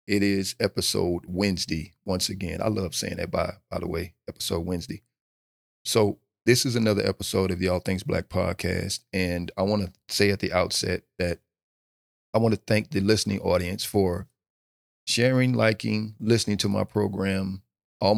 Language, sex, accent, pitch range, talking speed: English, male, American, 90-110 Hz, 170 wpm